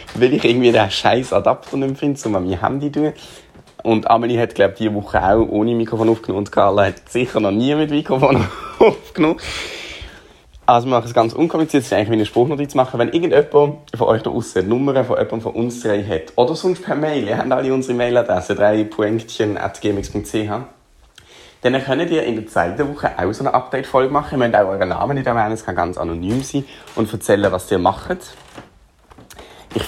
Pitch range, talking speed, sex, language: 105-130 Hz, 205 wpm, male, German